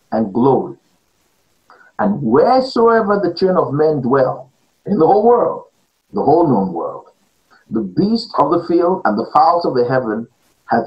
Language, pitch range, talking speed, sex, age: English, 130-205 Hz, 160 wpm, male, 50-69